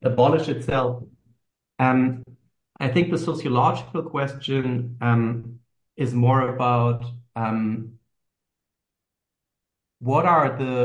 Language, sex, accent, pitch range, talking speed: English, male, German, 115-135 Hz, 90 wpm